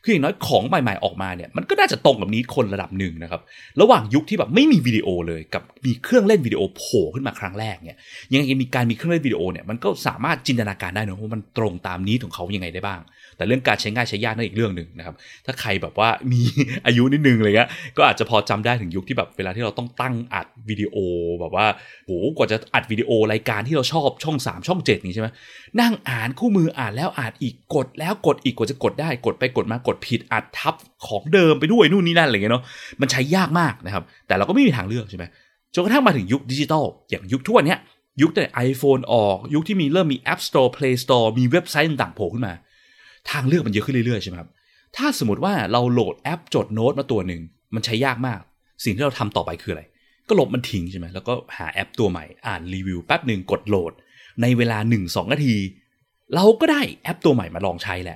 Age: 20-39